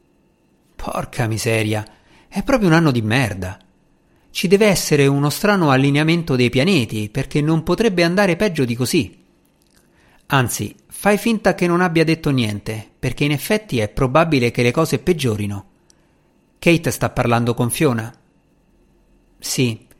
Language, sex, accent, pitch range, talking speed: Italian, male, native, 115-160 Hz, 140 wpm